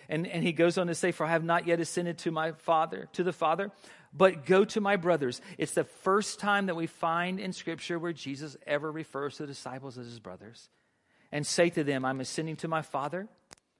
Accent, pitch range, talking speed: American, 145-170 Hz, 225 wpm